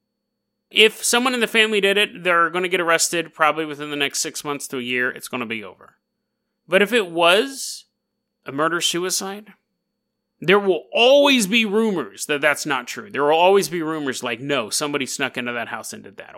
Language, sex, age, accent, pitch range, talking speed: English, male, 30-49, American, 150-230 Hz, 205 wpm